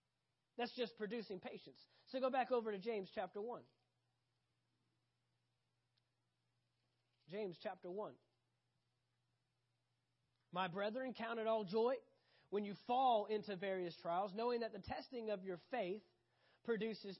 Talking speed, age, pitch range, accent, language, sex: 120 wpm, 30-49, 185-270 Hz, American, English, male